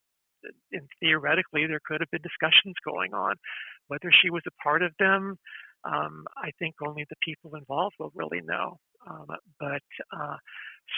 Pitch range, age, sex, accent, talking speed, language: 150-190 Hz, 50-69, male, American, 160 wpm, English